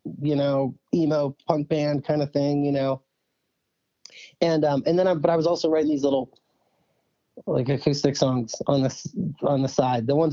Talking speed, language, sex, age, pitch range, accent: 185 wpm, English, male, 30-49, 135-180 Hz, American